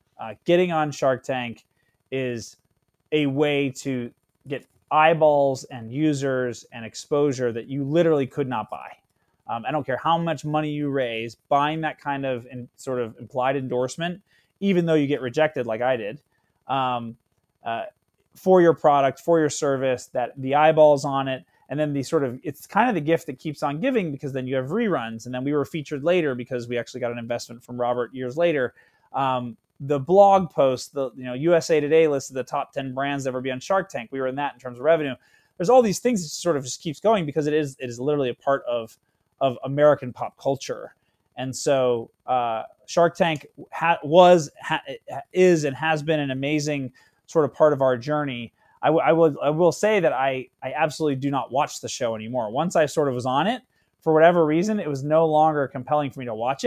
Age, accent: 30-49, American